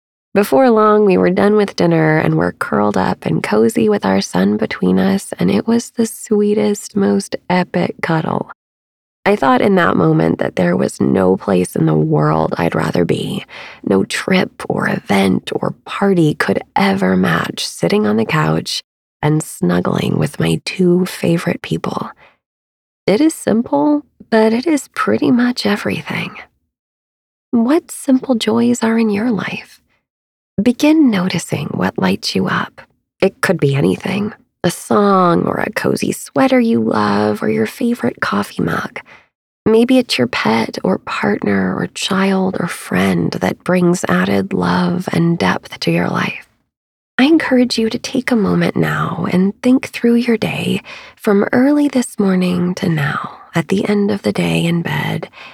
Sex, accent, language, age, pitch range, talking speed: female, American, English, 20-39, 155-225 Hz, 160 wpm